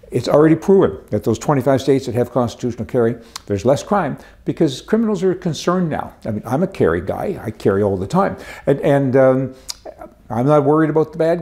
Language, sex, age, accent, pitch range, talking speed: English, male, 60-79, American, 110-150 Hz, 205 wpm